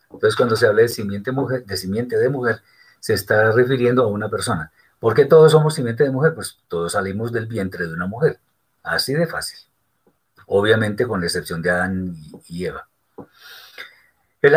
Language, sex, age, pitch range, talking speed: Spanish, male, 40-59, 115-160 Hz, 175 wpm